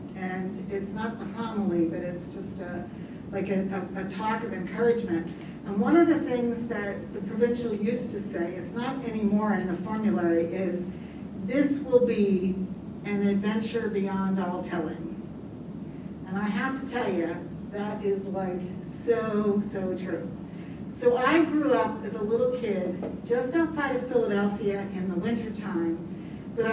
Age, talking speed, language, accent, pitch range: 50-69, 160 wpm, English, American, 195-230 Hz